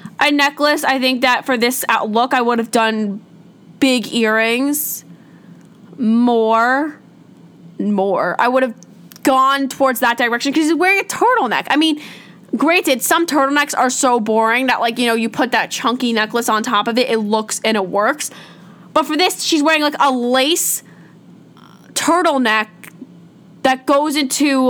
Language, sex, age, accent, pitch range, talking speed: English, female, 20-39, American, 220-275 Hz, 160 wpm